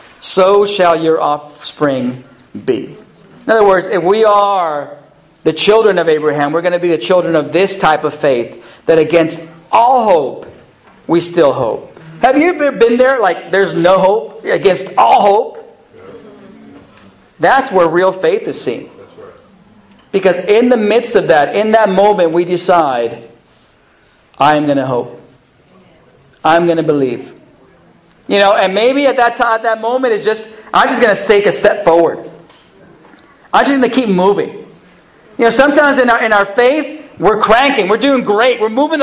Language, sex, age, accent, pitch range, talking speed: English, male, 50-69, American, 175-265 Hz, 170 wpm